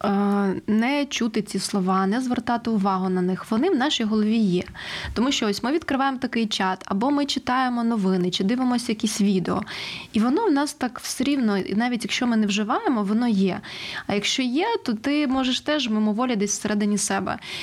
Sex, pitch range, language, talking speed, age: female, 195-250 Hz, Ukrainian, 185 wpm, 20-39